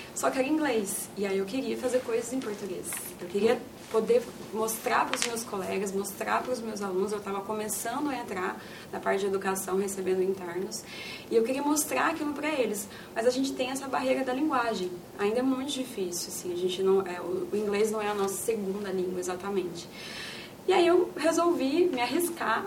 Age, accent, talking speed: 20-39, Brazilian, 200 wpm